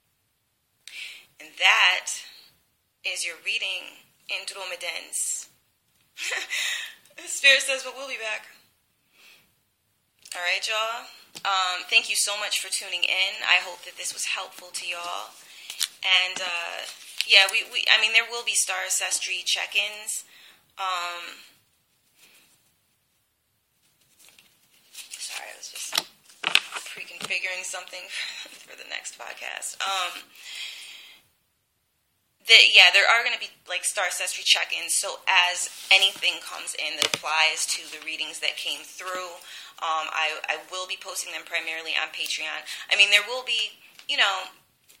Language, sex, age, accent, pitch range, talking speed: English, female, 20-39, American, 160-195 Hz, 125 wpm